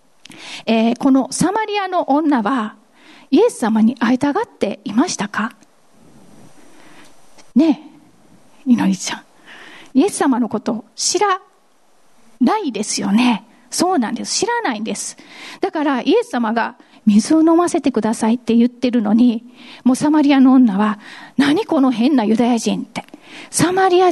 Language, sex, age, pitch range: Japanese, female, 40-59, 235-305 Hz